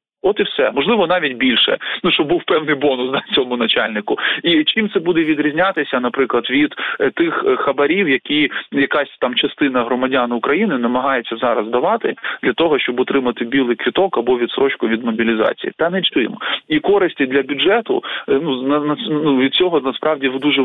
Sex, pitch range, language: male, 125-170 Hz, Ukrainian